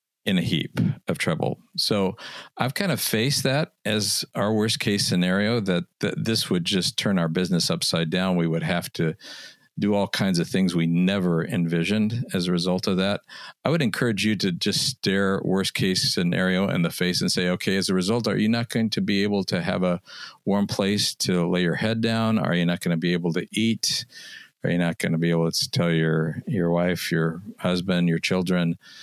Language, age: English, 50-69